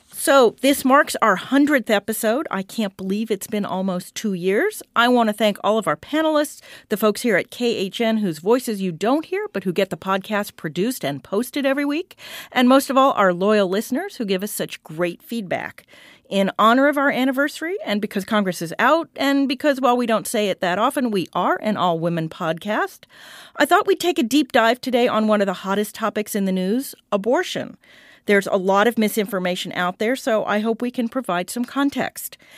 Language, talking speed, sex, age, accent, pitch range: English, 205 wpm, female, 40-59, American, 195-255 Hz